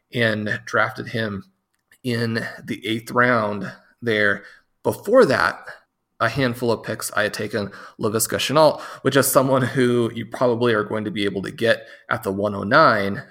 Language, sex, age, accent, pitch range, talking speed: English, male, 30-49, American, 105-125 Hz, 160 wpm